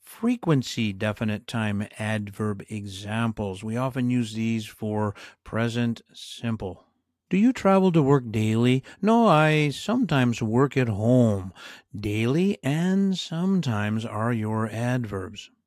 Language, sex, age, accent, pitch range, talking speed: English, male, 50-69, American, 110-160 Hz, 115 wpm